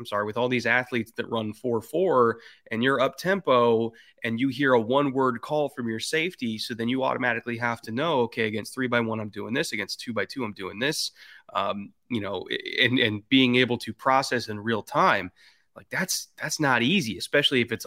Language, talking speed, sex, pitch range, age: English, 220 wpm, male, 110-130 Hz, 20-39